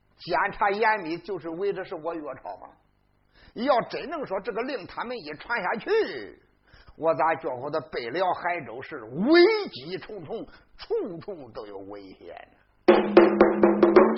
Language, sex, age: Chinese, male, 50-69